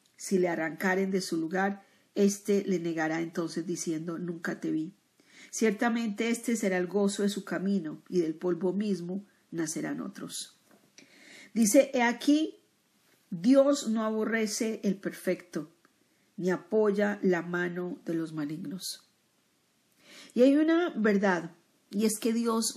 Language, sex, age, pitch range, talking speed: Spanish, female, 40-59, 180-230 Hz, 135 wpm